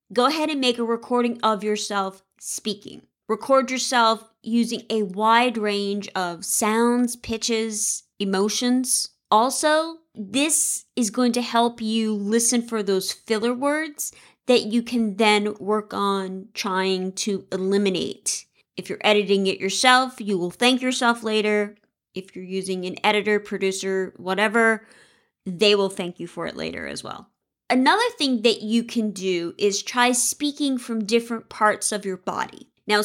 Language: English